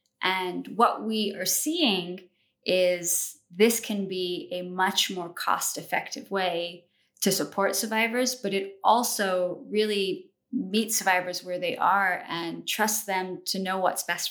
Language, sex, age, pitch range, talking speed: English, female, 20-39, 180-220 Hz, 140 wpm